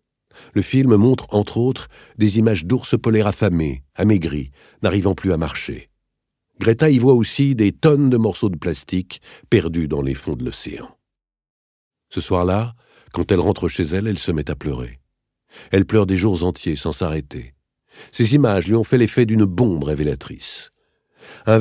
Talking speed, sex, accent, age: 165 wpm, male, French, 60-79